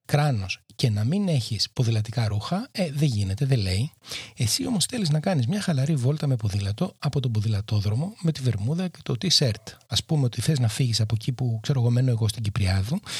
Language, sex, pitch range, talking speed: Greek, male, 115-150 Hz, 205 wpm